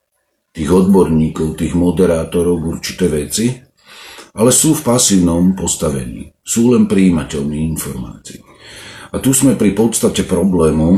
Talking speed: 115 wpm